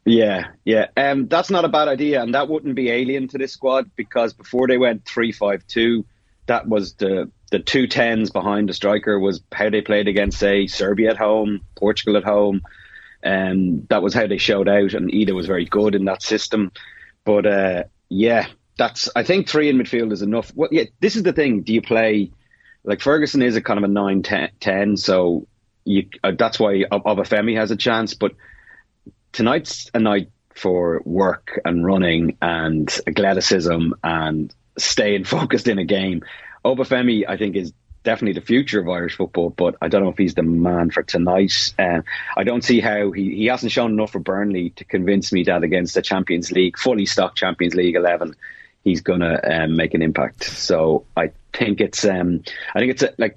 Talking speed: 200 wpm